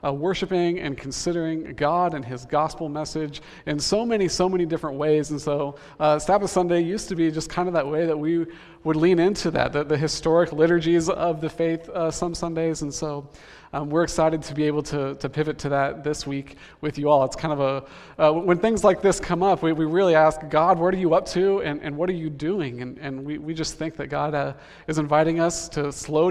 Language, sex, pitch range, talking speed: English, male, 145-175 Hz, 235 wpm